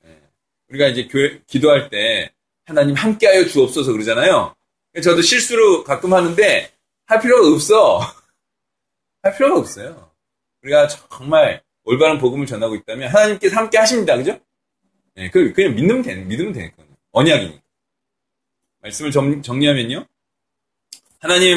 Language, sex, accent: Korean, male, native